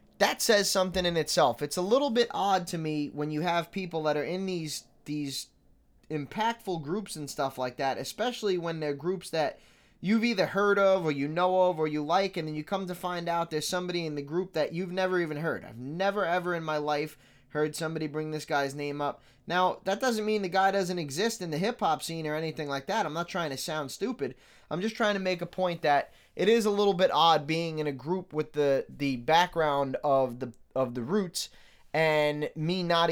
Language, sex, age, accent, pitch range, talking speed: English, male, 20-39, American, 145-185 Hz, 225 wpm